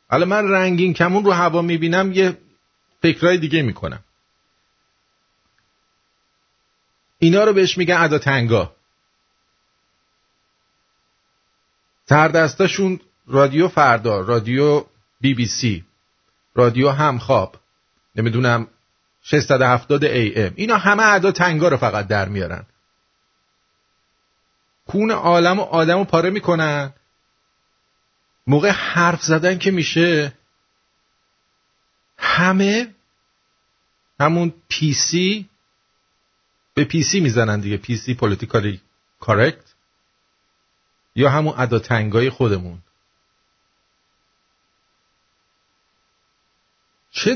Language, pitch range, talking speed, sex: English, 125-180 Hz, 90 wpm, male